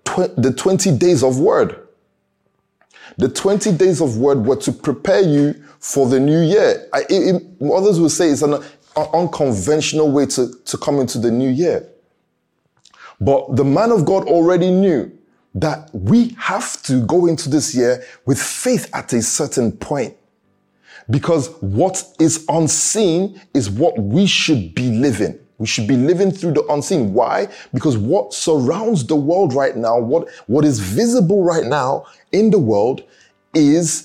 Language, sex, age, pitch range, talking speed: English, male, 20-39, 125-175 Hz, 155 wpm